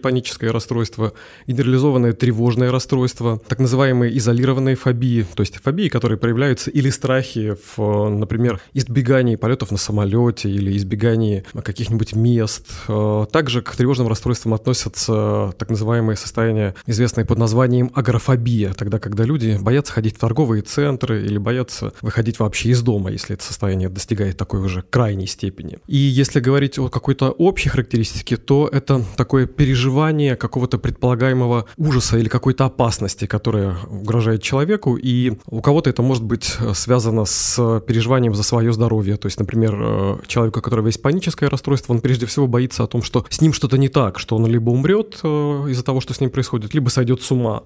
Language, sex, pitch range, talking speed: Russian, male, 110-130 Hz, 160 wpm